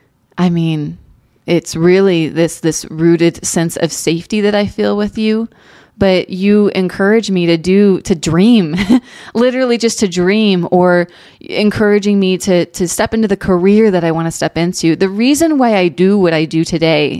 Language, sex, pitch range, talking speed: English, female, 170-210 Hz, 180 wpm